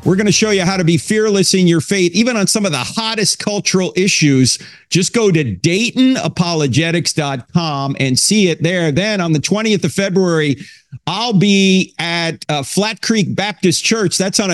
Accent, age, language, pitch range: American, 50-69, English, 155-195 Hz